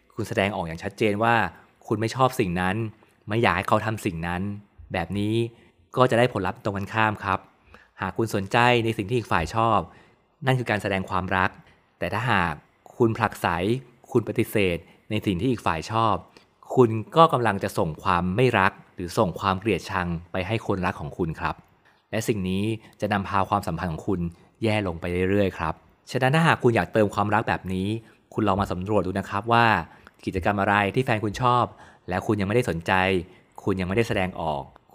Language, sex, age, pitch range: Thai, male, 20-39, 95-115 Hz